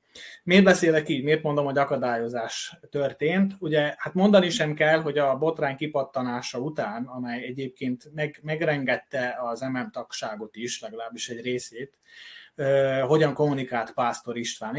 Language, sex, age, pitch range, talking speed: Hungarian, male, 20-39, 130-170 Hz, 125 wpm